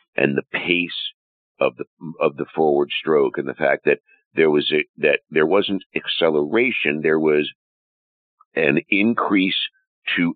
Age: 60-79